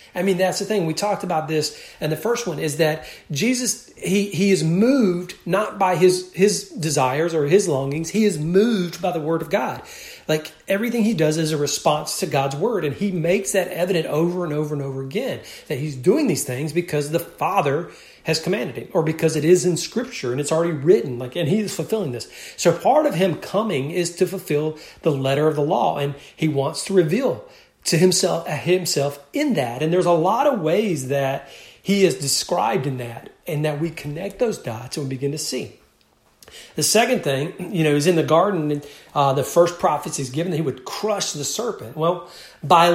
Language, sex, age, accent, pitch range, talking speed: English, male, 40-59, American, 150-195 Hz, 215 wpm